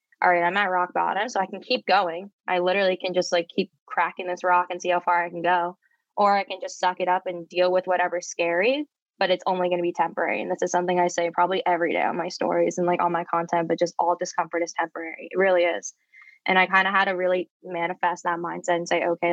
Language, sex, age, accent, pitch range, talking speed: English, female, 10-29, American, 175-190 Hz, 265 wpm